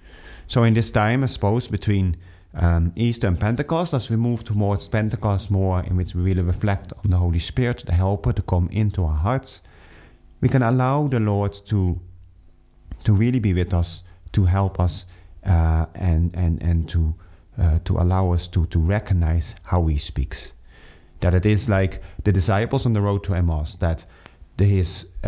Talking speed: 180 wpm